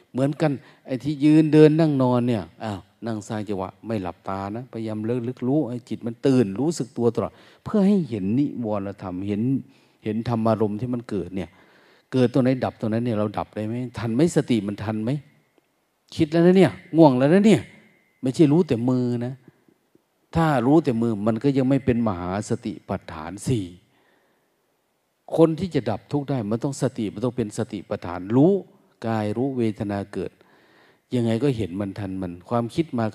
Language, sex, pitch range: Thai, male, 105-135 Hz